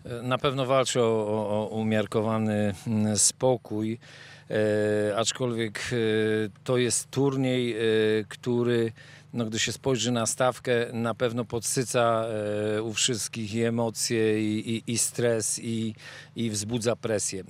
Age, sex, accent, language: 40-59, male, native, Polish